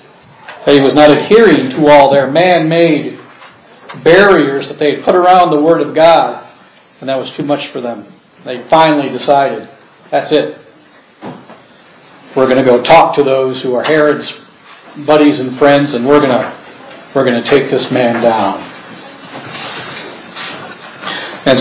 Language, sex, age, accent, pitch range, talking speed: English, male, 50-69, American, 130-165 Hz, 155 wpm